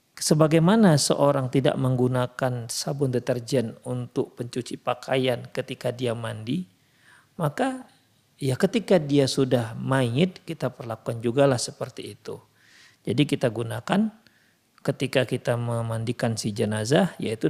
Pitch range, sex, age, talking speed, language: 120-165 Hz, male, 40-59, 115 wpm, Indonesian